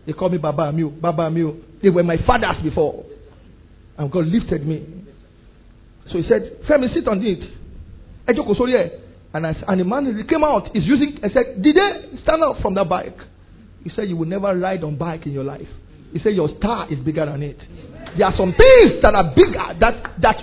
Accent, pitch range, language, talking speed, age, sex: Nigerian, 150-235 Hz, English, 205 wpm, 50-69, male